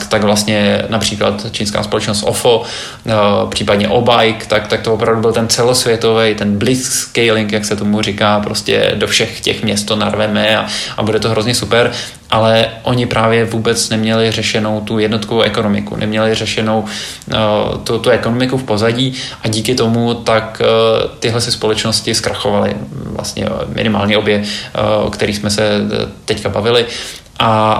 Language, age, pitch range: Czech, 20-39, 105-115 Hz